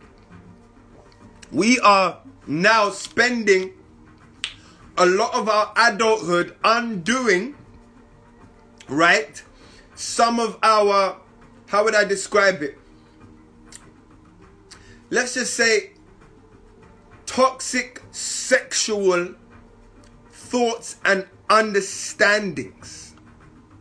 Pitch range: 180-240 Hz